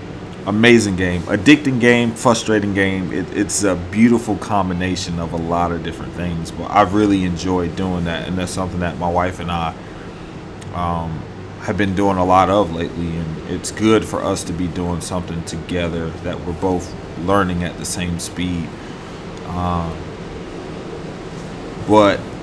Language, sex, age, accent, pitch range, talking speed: English, male, 30-49, American, 90-100 Hz, 155 wpm